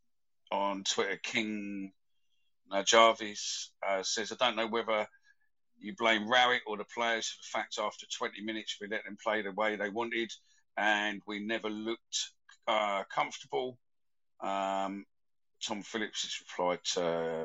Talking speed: 150 wpm